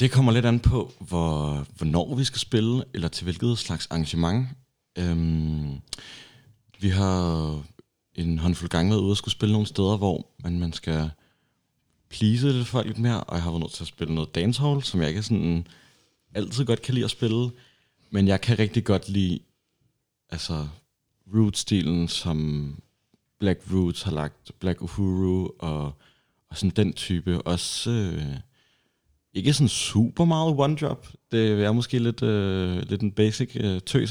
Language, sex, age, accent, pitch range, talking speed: Danish, male, 30-49, native, 85-115 Hz, 165 wpm